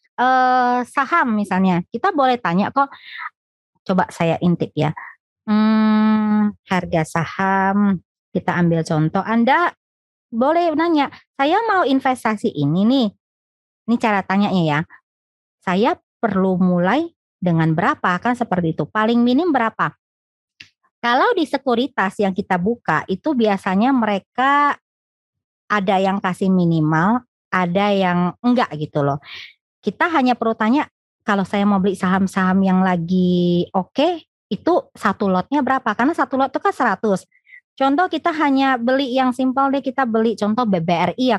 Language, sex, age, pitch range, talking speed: Indonesian, male, 20-39, 185-260 Hz, 135 wpm